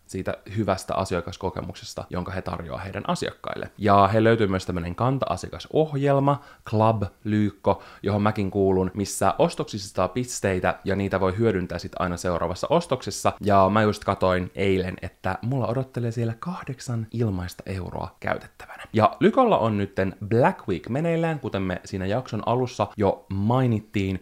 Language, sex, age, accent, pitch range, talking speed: Finnish, male, 20-39, native, 95-125 Hz, 140 wpm